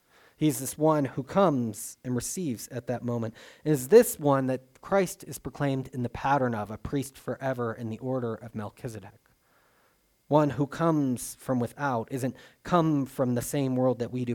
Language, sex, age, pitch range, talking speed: English, male, 30-49, 115-145 Hz, 185 wpm